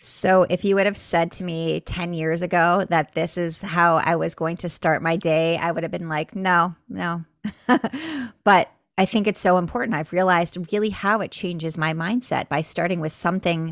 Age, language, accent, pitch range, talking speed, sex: 30-49, English, American, 165-205 Hz, 205 wpm, female